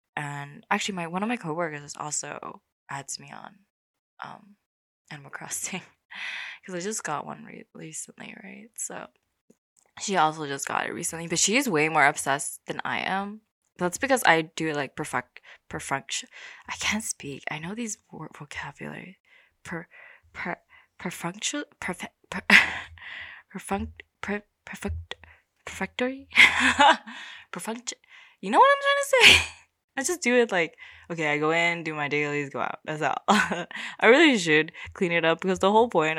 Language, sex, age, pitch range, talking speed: English, female, 20-39, 155-235 Hz, 160 wpm